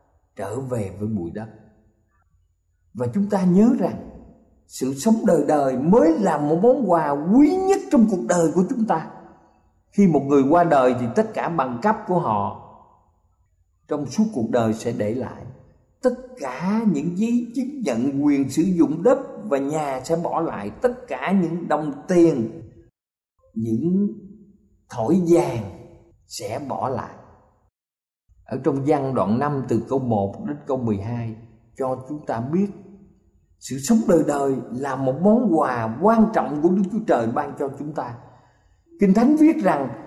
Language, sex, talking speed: Vietnamese, male, 165 wpm